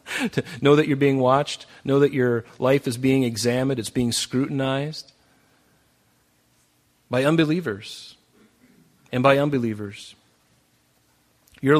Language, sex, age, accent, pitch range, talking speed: English, male, 40-59, American, 105-135 Hz, 110 wpm